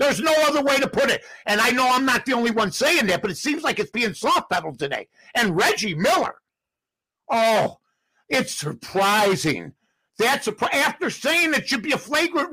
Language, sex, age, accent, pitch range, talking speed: English, male, 50-69, American, 225-330 Hz, 190 wpm